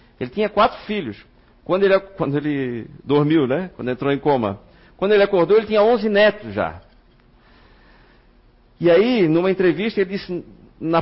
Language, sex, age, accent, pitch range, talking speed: Portuguese, male, 50-69, Brazilian, 125-175 Hz, 160 wpm